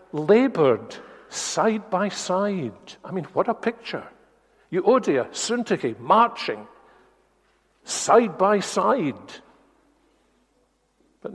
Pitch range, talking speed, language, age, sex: 145-195 Hz, 85 wpm, English, 60-79, male